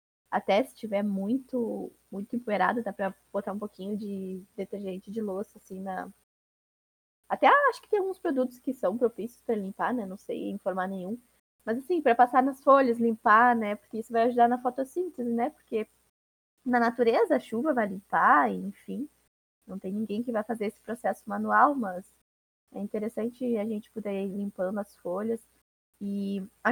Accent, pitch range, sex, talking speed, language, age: Brazilian, 200-250 Hz, female, 175 wpm, Portuguese, 10-29